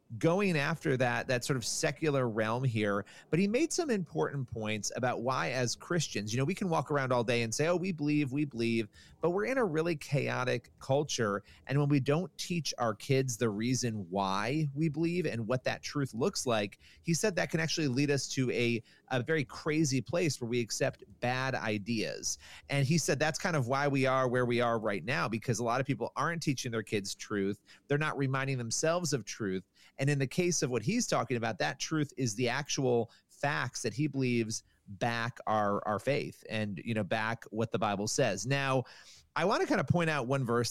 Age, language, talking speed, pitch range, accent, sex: 30-49, English, 215 wpm, 115-150 Hz, American, male